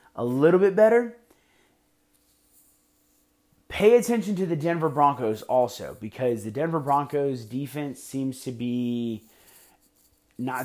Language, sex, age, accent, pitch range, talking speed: English, male, 30-49, American, 130-190 Hz, 115 wpm